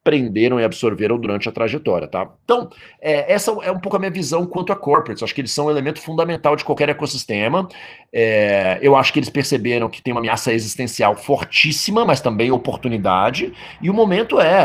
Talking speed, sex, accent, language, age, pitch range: 195 wpm, male, Brazilian, Portuguese, 40-59, 120-165 Hz